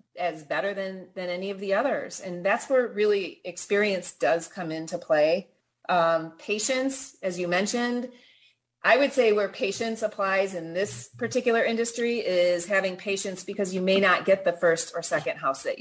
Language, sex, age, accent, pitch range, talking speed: English, female, 30-49, American, 165-220 Hz, 175 wpm